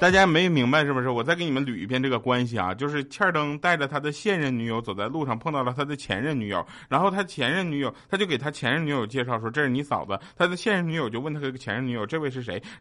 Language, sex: Chinese, male